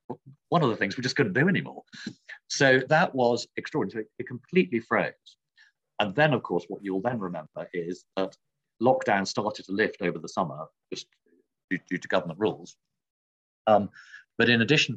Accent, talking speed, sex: British, 170 wpm, male